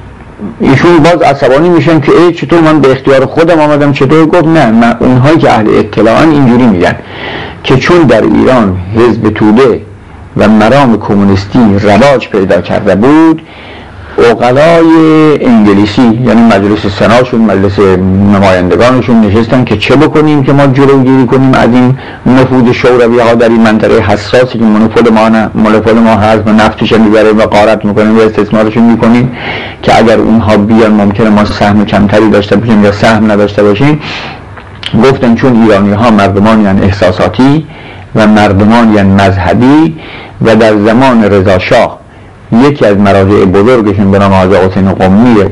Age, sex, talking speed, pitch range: 50-69, male, 145 wpm, 105-130 Hz